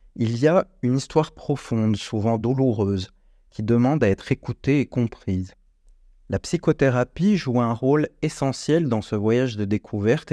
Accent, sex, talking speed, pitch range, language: French, male, 150 wpm, 105-135 Hz, French